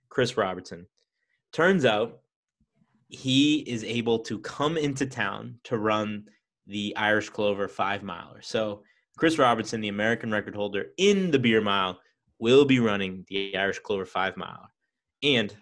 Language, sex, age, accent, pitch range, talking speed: English, male, 20-39, American, 110-135 Hz, 145 wpm